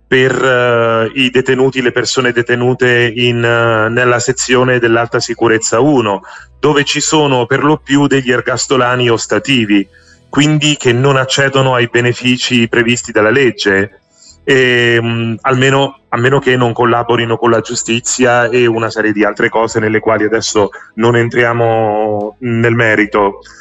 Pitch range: 115-140 Hz